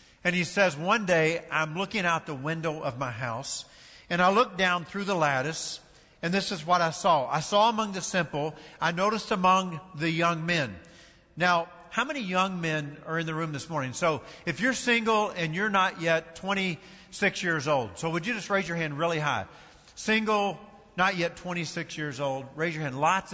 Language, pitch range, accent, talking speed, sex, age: English, 150-190 Hz, American, 200 wpm, male, 50-69